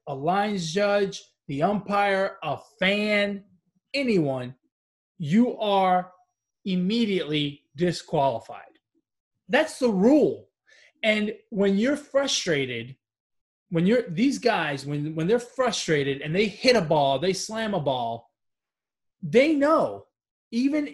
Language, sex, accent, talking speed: English, male, American, 110 wpm